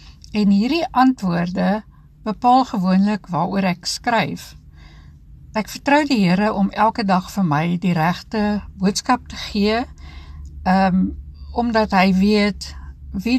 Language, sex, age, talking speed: Dutch, female, 60-79, 120 wpm